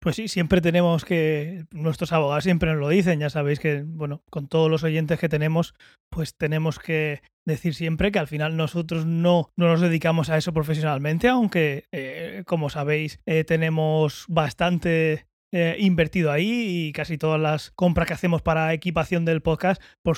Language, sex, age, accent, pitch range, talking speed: Spanish, male, 20-39, Spanish, 150-175 Hz, 175 wpm